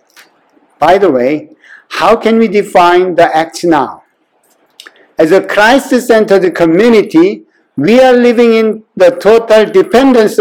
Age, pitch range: 60-79, 160-215 Hz